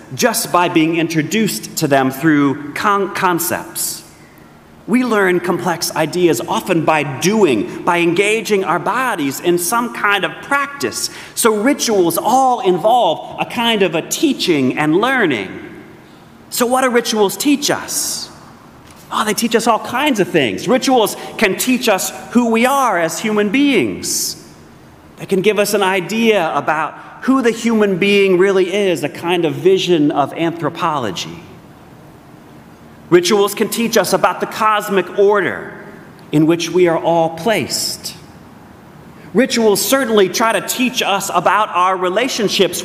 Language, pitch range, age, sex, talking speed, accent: English, 165-220 Hz, 30-49, male, 140 wpm, American